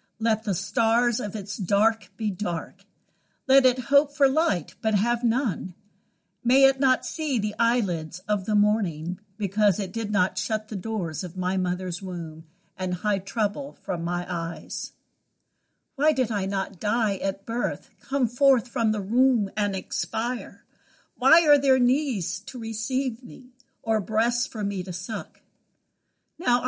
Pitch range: 190-255 Hz